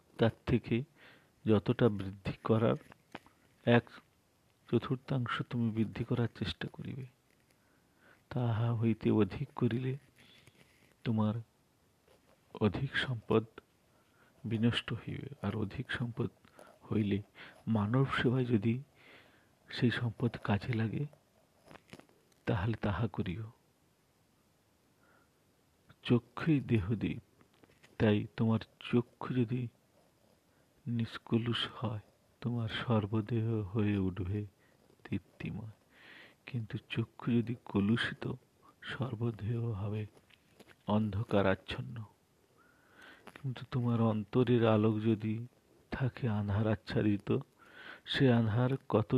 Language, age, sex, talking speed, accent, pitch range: Bengali, 50-69, male, 45 wpm, native, 110-125 Hz